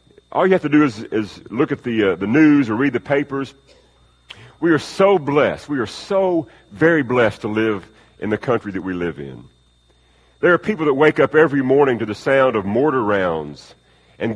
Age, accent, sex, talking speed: 50-69, American, male, 210 wpm